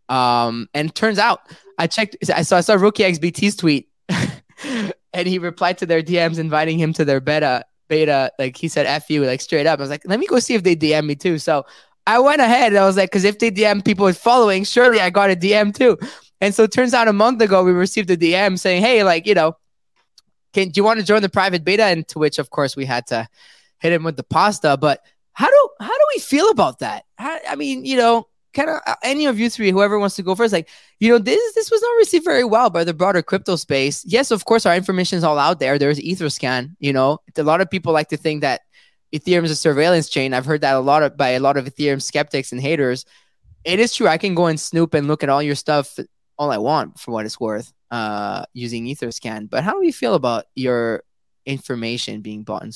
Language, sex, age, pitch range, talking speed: English, male, 20-39, 140-210 Hz, 250 wpm